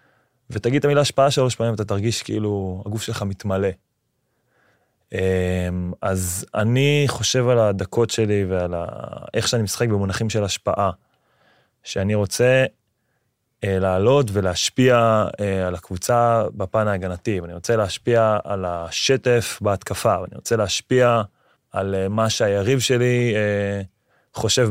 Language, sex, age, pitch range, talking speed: Hebrew, male, 20-39, 100-115 Hz, 115 wpm